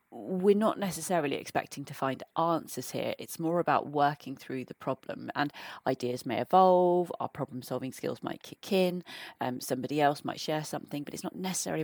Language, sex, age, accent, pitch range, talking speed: English, female, 30-49, British, 135-170 Hz, 180 wpm